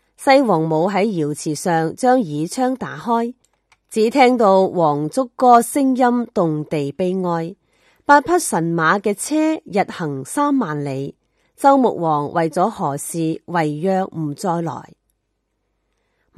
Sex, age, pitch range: female, 30-49, 160-255 Hz